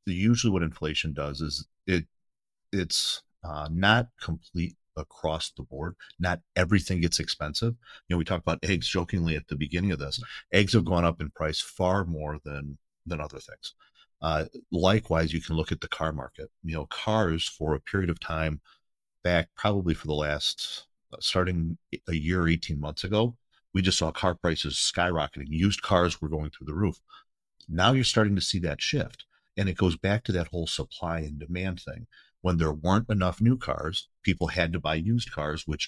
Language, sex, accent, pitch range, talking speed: English, male, American, 80-95 Hz, 190 wpm